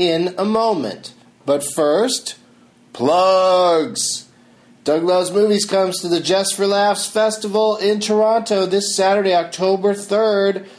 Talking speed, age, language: 120 wpm, 40-59, English